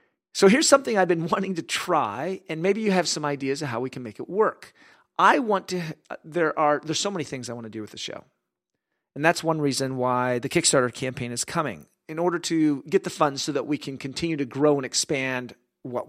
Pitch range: 140-190 Hz